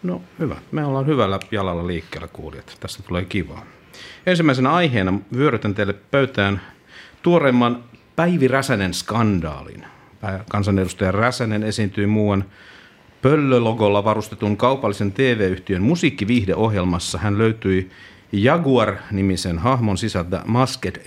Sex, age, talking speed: male, 50-69, 95 wpm